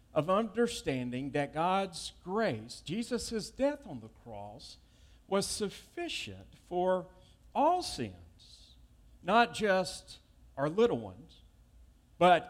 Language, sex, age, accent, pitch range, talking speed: English, male, 50-69, American, 120-200 Hz, 100 wpm